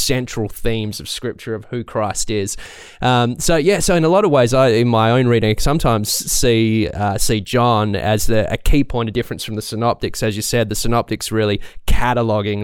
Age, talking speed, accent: 20-39, 210 wpm, Australian